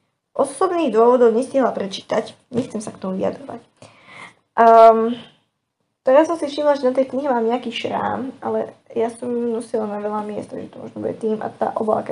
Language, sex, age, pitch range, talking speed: Slovak, female, 10-29, 215-260 Hz, 185 wpm